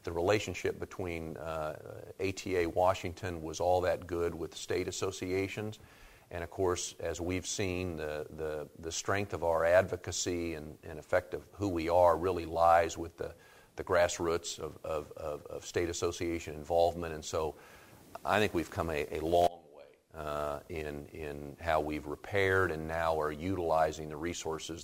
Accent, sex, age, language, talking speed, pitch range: American, male, 50-69, English, 165 wpm, 80-90 Hz